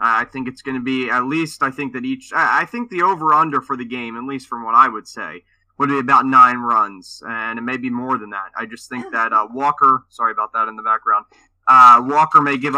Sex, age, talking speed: male, 20-39, 260 wpm